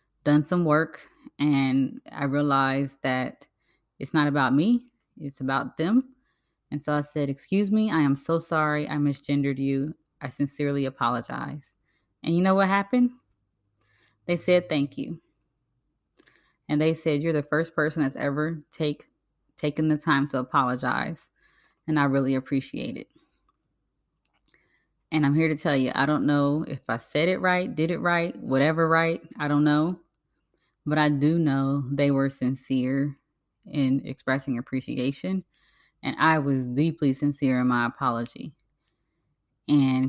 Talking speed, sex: 150 wpm, female